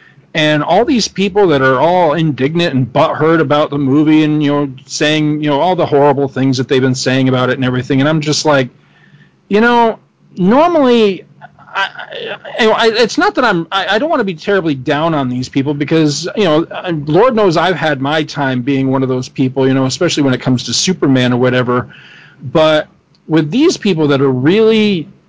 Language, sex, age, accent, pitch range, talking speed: English, male, 40-59, American, 140-195 Hz, 200 wpm